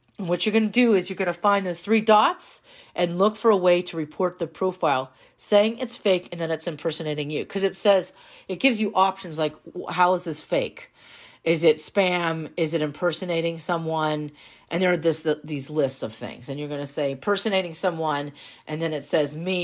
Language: English